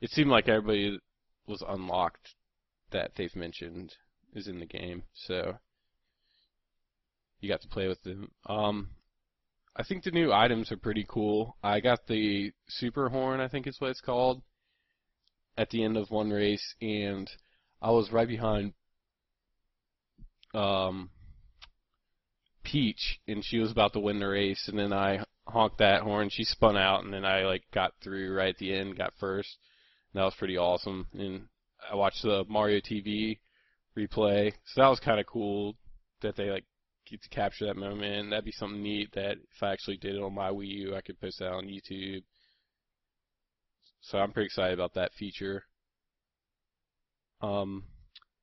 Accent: American